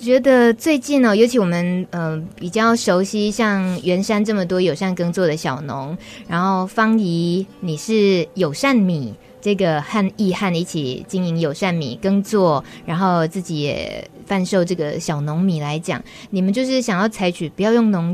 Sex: female